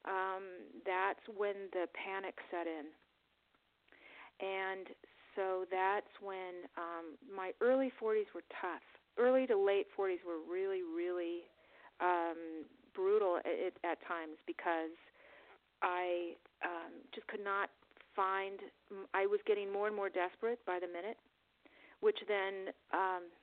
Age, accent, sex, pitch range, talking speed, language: 40-59, American, female, 180-220 Hz, 125 wpm, English